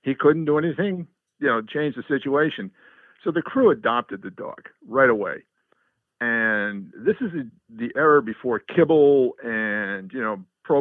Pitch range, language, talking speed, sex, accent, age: 115-155 Hz, English, 160 wpm, male, American, 50-69